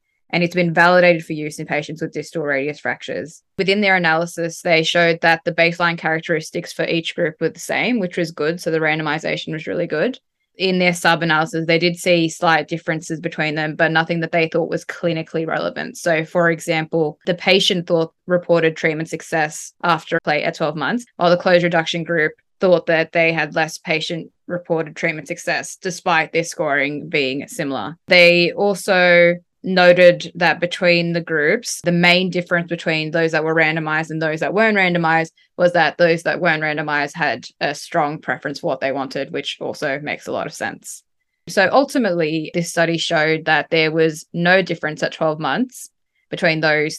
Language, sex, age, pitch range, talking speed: English, female, 10-29, 155-175 Hz, 185 wpm